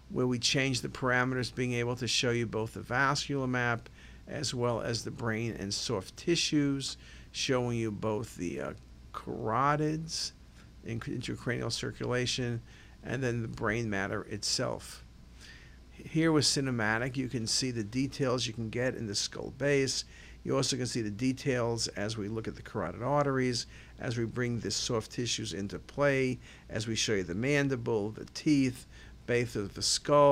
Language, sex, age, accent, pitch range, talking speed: English, male, 50-69, American, 110-135 Hz, 165 wpm